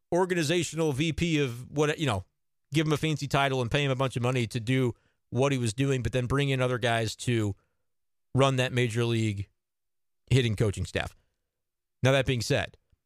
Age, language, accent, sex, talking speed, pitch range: 40-59, English, American, male, 195 wpm, 120-170 Hz